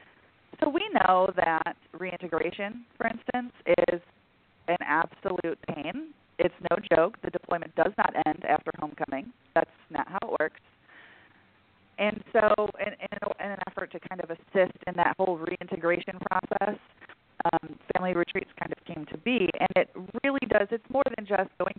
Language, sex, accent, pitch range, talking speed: English, female, American, 175-215 Hz, 155 wpm